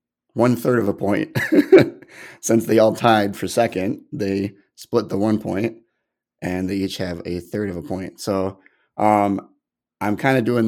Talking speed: 175 wpm